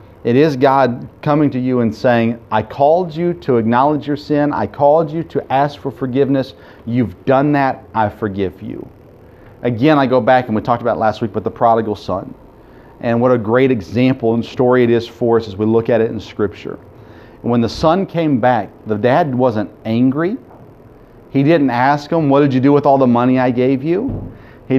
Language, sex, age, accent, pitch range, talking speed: English, male, 40-59, American, 115-150 Hz, 205 wpm